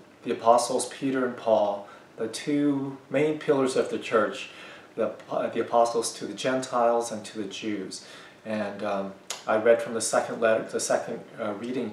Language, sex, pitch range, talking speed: English, male, 105-125 Hz, 175 wpm